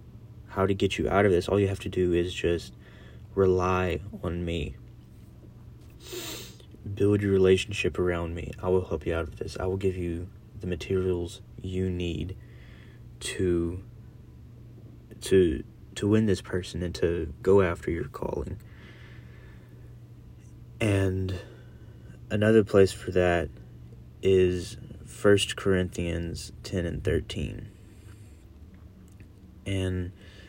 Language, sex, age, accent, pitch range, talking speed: English, male, 30-49, American, 90-100 Hz, 120 wpm